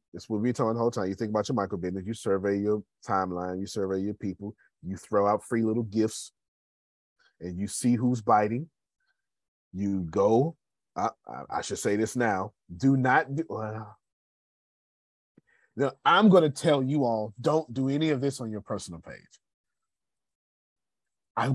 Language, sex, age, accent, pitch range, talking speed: English, male, 30-49, American, 95-150 Hz, 175 wpm